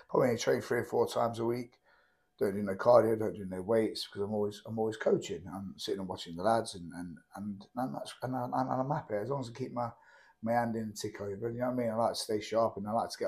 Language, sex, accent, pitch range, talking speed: English, male, British, 105-125 Hz, 290 wpm